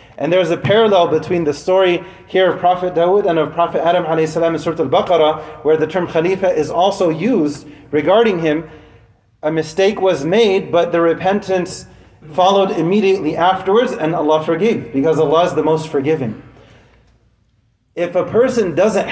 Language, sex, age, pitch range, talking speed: English, male, 30-49, 150-185 Hz, 165 wpm